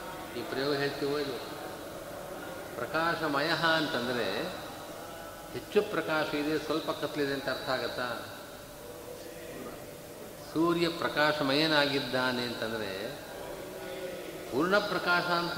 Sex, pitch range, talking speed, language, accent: male, 140-160 Hz, 75 wpm, Kannada, native